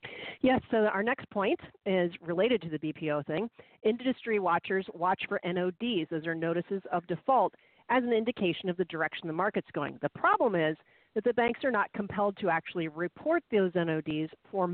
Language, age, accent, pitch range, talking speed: English, 40-59, American, 175-230 Hz, 185 wpm